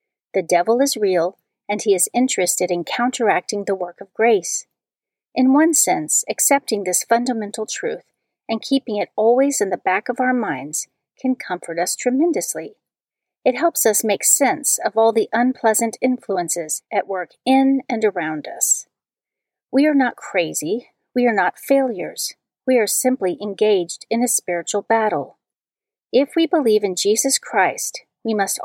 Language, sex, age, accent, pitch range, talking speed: English, female, 40-59, American, 195-265 Hz, 155 wpm